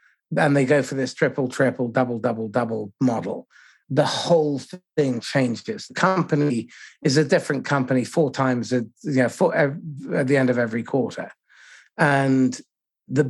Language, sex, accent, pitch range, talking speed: English, male, British, 130-160 Hz, 160 wpm